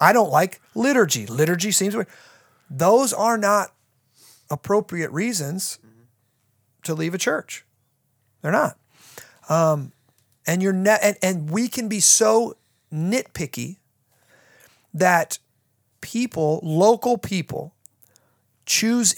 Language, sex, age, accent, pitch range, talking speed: English, male, 30-49, American, 145-200 Hz, 100 wpm